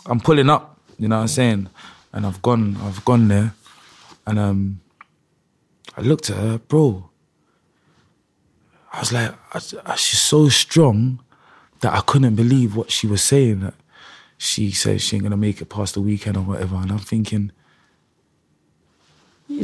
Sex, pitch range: male, 105-145 Hz